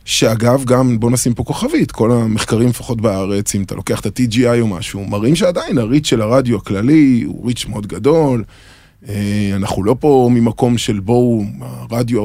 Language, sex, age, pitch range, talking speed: English, male, 20-39, 110-140 Hz, 160 wpm